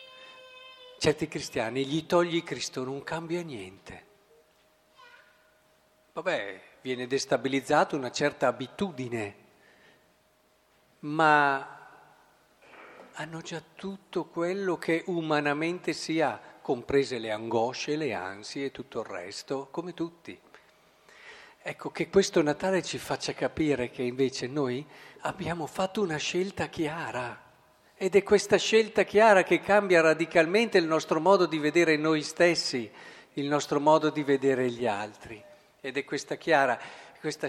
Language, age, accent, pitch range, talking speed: Italian, 50-69, native, 135-170 Hz, 120 wpm